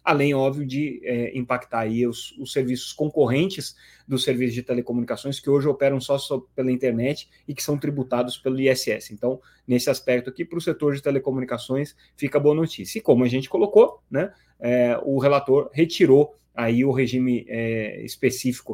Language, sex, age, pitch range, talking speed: Portuguese, male, 20-39, 125-145 Hz, 170 wpm